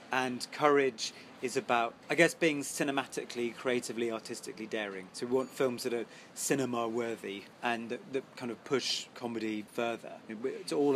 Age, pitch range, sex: 30-49, 115-135 Hz, male